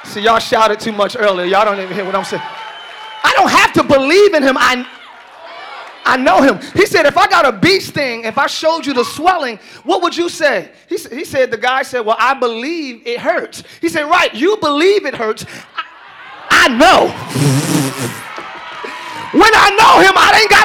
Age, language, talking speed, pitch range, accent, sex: 30-49, English, 205 wpm, 270-360 Hz, American, male